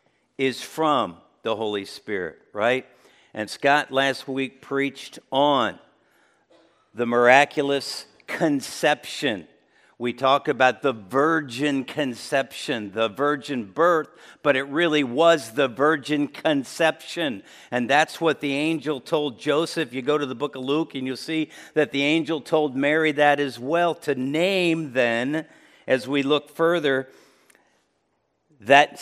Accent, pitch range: American, 135-165 Hz